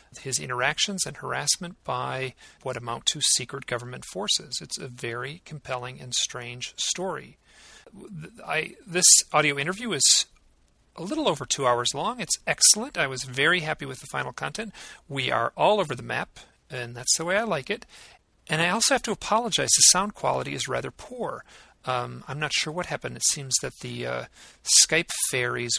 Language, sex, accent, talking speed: English, male, American, 180 wpm